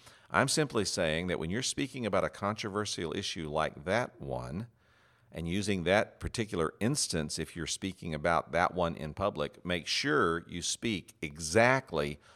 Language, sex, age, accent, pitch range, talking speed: English, male, 50-69, American, 80-110 Hz, 155 wpm